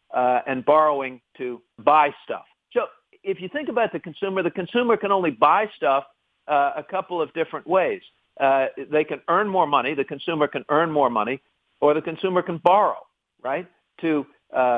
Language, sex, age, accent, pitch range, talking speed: English, male, 50-69, American, 135-175 Hz, 185 wpm